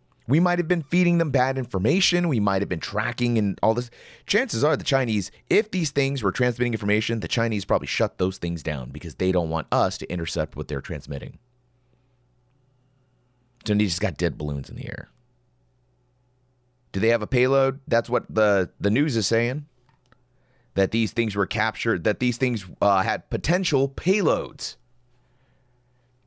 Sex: male